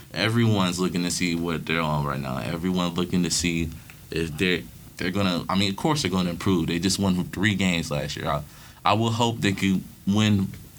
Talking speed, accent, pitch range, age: 230 wpm, American, 90-120 Hz, 20-39